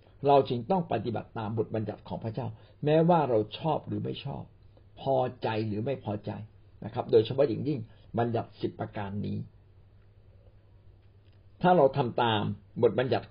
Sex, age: male, 60-79